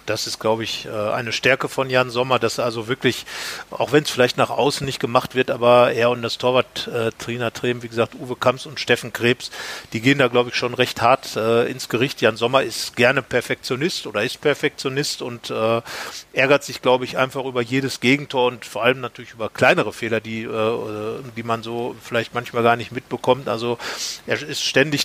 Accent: German